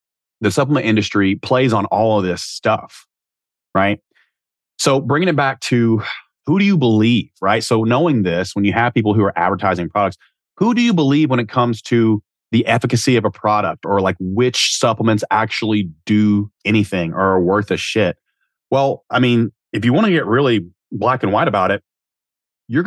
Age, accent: 30-49, American